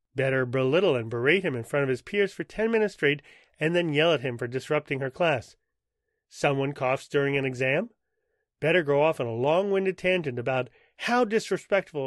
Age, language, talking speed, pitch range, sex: 30-49, English, 190 wpm, 135-180 Hz, male